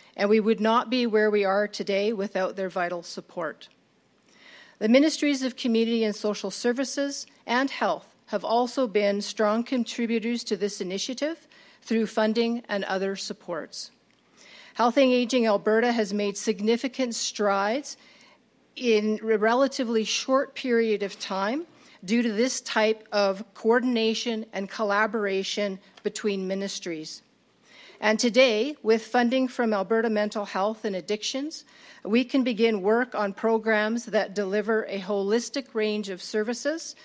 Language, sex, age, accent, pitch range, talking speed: English, female, 50-69, American, 205-245 Hz, 135 wpm